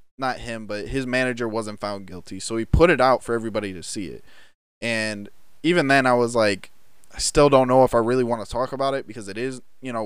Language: English